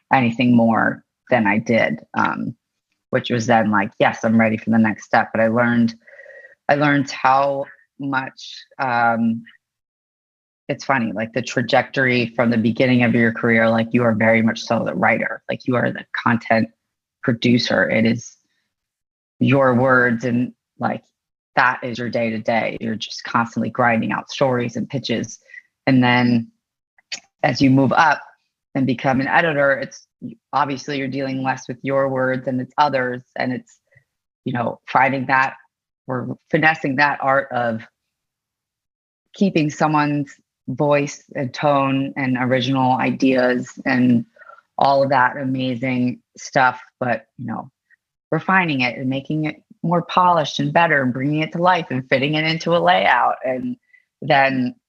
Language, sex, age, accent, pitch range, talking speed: English, female, 30-49, American, 120-140 Hz, 155 wpm